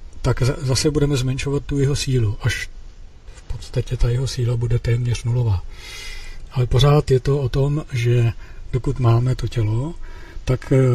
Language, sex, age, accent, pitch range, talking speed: Czech, male, 50-69, native, 110-135 Hz, 155 wpm